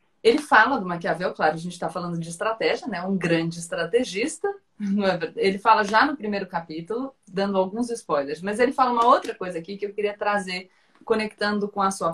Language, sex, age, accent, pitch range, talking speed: Portuguese, female, 20-39, Brazilian, 190-230 Hz, 205 wpm